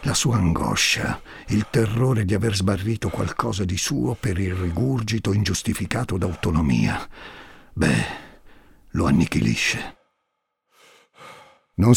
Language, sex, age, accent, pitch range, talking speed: Italian, male, 50-69, native, 90-115 Hz, 100 wpm